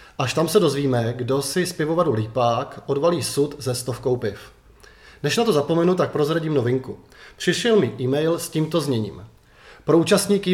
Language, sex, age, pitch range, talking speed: Czech, male, 30-49, 130-165 Hz, 165 wpm